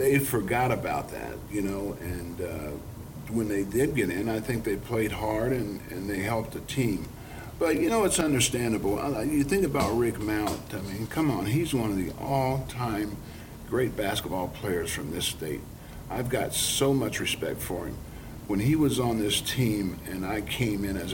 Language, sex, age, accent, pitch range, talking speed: English, male, 50-69, American, 105-135 Hz, 190 wpm